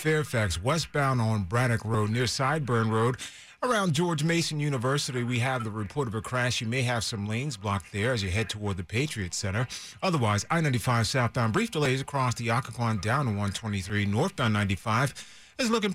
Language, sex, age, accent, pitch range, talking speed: English, male, 30-49, American, 110-145 Hz, 180 wpm